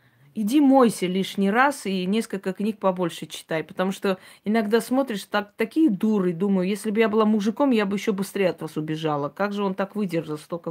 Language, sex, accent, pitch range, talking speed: Russian, female, native, 185-235 Hz, 190 wpm